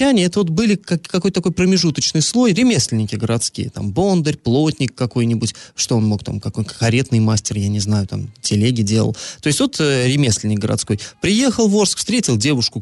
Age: 30-49